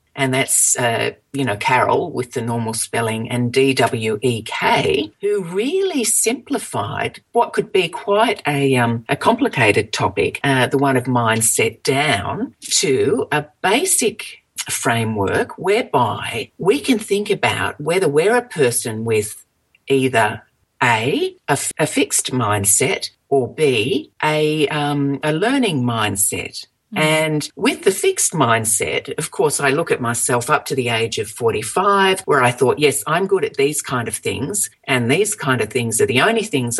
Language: English